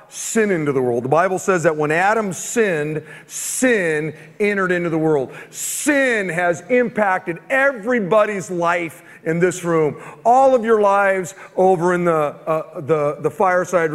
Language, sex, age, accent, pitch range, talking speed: English, male, 40-59, American, 160-220 Hz, 150 wpm